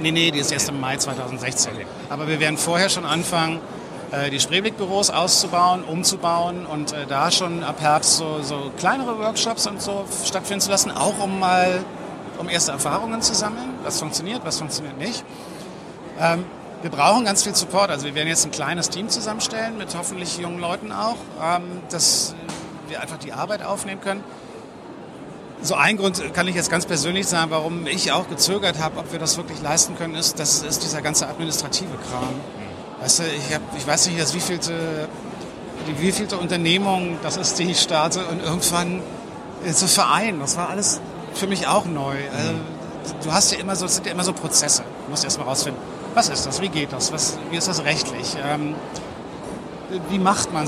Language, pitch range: German, 155-195 Hz